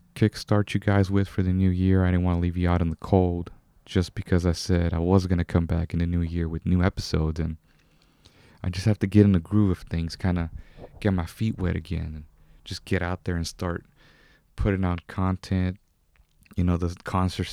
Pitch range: 85-100 Hz